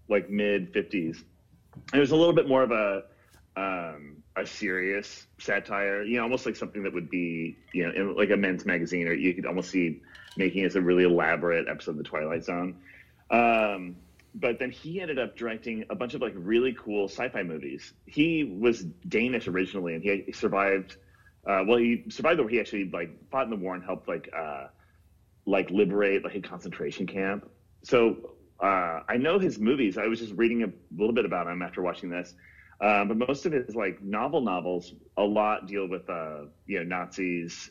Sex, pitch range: male, 90-110 Hz